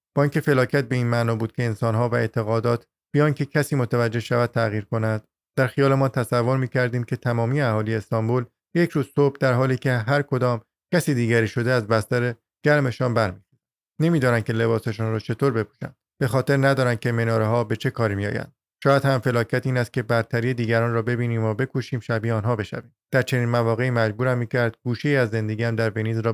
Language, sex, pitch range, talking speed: Persian, male, 115-135 Hz, 190 wpm